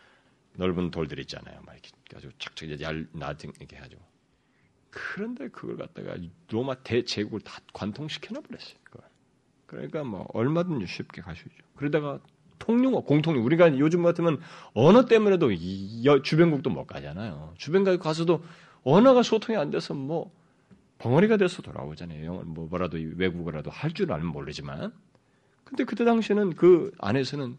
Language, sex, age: Korean, male, 40-59